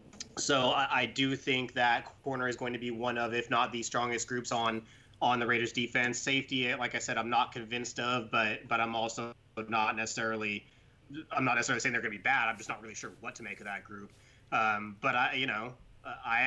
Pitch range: 110-125 Hz